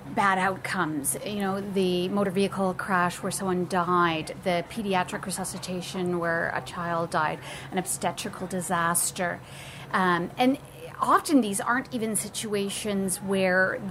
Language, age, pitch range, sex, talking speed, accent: English, 30-49, 185-215 Hz, female, 125 wpm, American